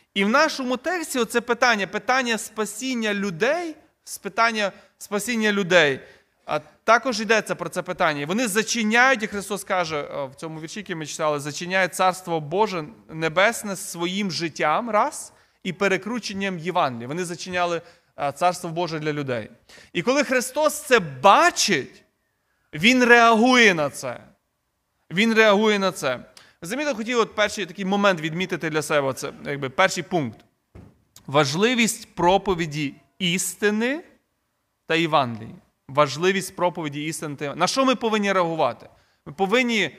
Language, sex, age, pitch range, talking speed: Ukrainian, male, 20-39, 175-225 Hz, 130 wpm